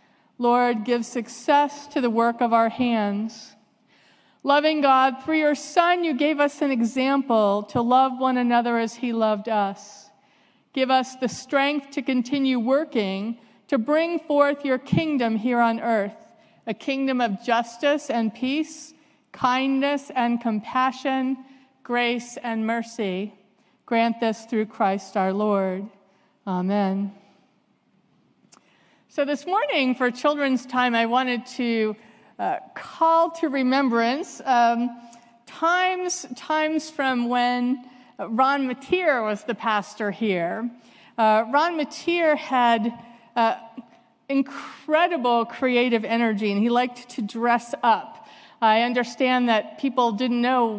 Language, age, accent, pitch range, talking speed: English, 50-69, American, 230-275 Hz, 125 wpm